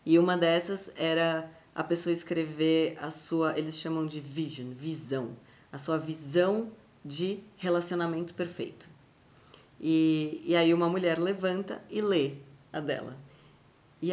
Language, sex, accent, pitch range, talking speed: Portuguese, female, Brazilian, 155-180 Hz, 130 wpm